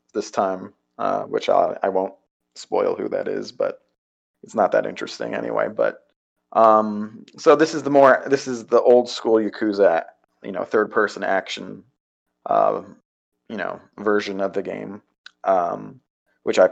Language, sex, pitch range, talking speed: English, male, 100-140 Hz, 160 wpm